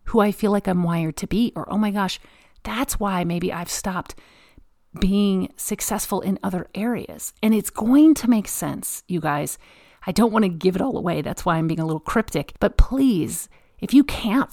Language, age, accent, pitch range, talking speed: English, 40-59, American, 170-215 Hz, 205 wpm